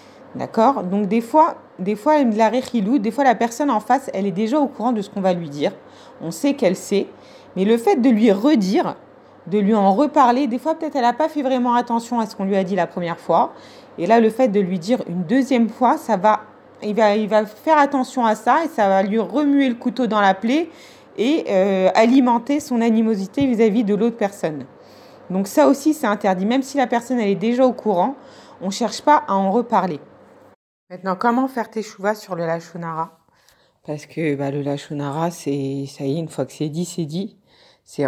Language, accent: French, French